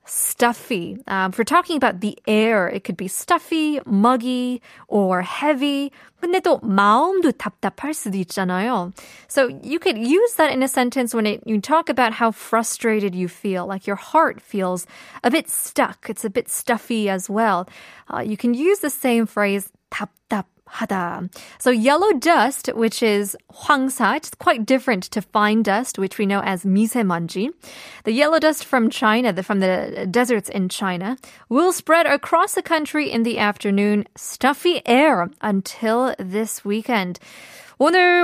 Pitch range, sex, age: 205-295 Hz, female, 20-39